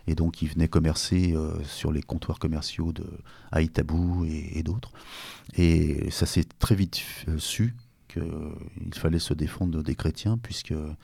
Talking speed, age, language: 145 wpm, 30-49, French